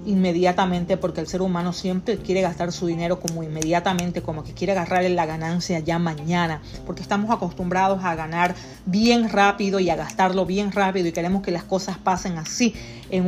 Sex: female